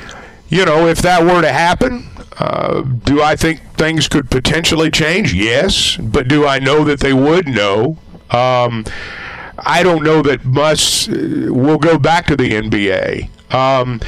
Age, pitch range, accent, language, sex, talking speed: 50-69, 130-180 Hz, American, English, male, 160 wpm